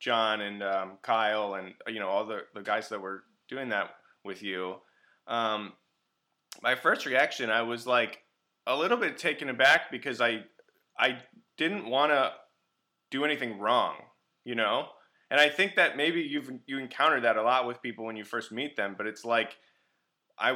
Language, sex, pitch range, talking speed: English, male, 105-125 Hz, 180 wpm